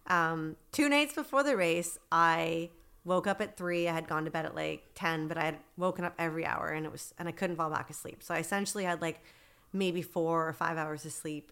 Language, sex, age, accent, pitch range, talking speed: English, female, 30-49, American, 160-200 Hz, 245 wpm